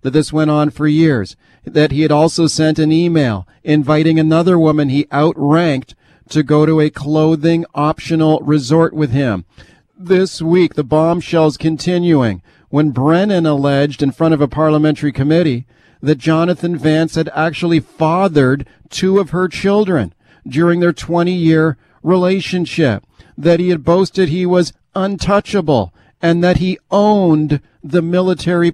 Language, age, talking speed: English, 40-59, 145 wpm